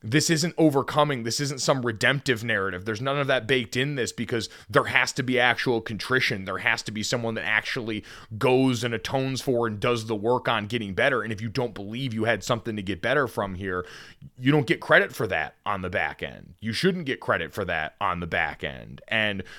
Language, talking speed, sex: English, 225 wpm, male